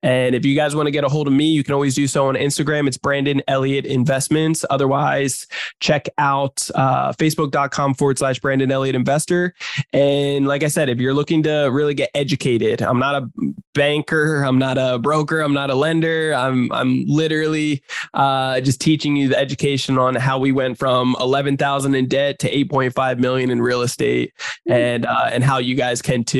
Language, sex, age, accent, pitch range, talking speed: English, male, 20-39, American, 130-145 Hz, 200 wpm